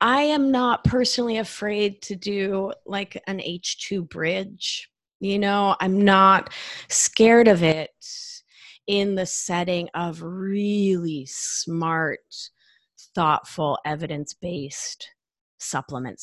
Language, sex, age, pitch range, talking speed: English, female, 30-49, 165-210 Hz, 100 wpm